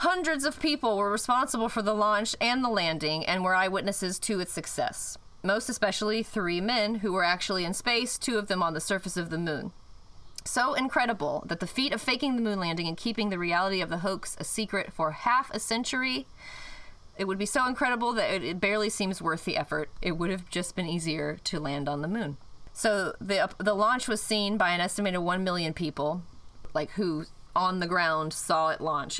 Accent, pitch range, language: American, 165-220 Hz, English